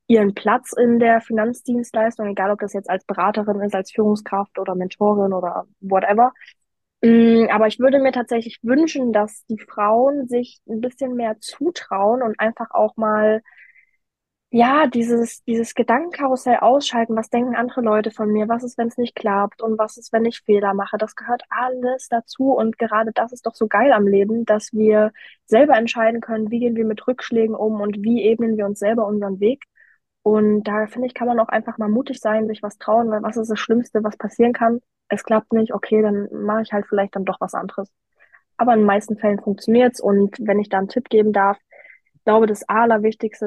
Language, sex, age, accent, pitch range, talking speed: German, female, 20-39, German, 205-230 Hz, 200 wpm